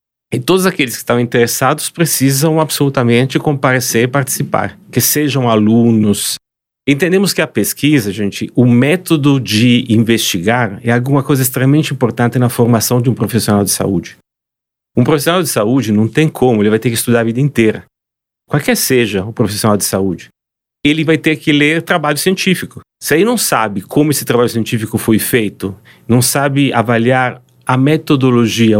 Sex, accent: male, Brazilian